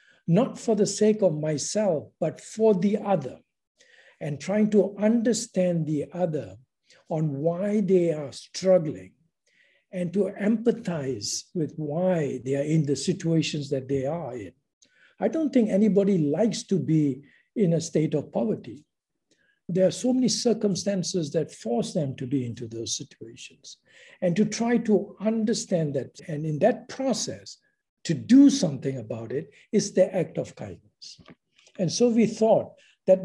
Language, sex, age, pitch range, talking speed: English, male, 60-79, 150-205 Hz, 155 wpm